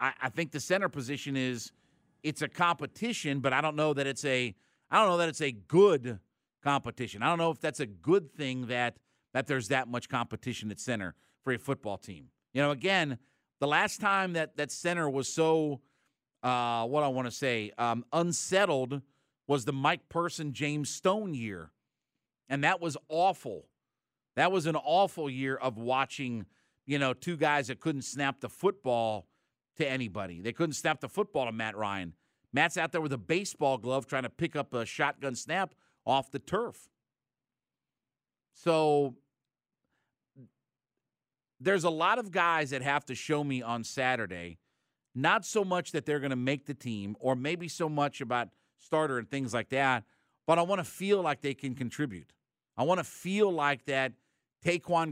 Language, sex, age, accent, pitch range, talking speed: English, male, 50-69, American, 125-160 Hz, 180 wpm